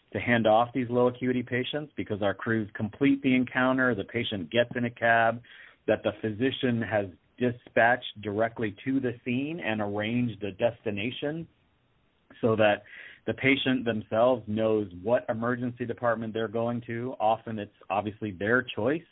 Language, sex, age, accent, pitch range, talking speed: English, male, 40-59, American, 105-125 Hz, 155 wpm